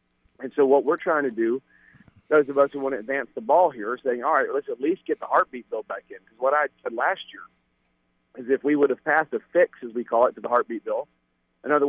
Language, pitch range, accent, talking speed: English, 120-150 Hz, American, 275 wpm